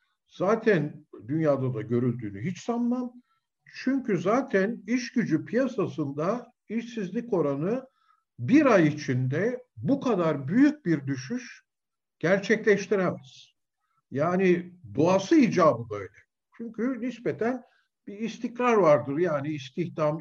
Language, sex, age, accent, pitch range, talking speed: Turkish, male, 50-69, native, 150-240 Hz, 100 wpm